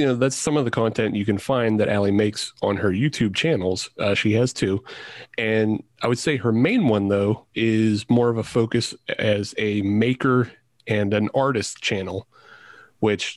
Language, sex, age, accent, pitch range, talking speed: English, male, 30-49, American, 105-120 Hz, 190 wpm